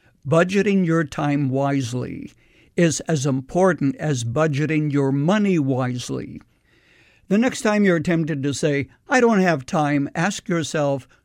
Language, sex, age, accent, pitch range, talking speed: English, male, 60-79, American, 135-170 Hz, 135 wpm